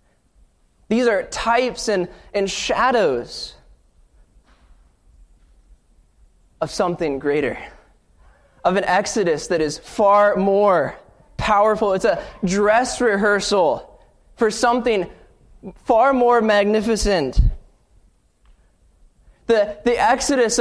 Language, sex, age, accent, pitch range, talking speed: English, male, 20-39, American, 190-240 Hz, 85 wpm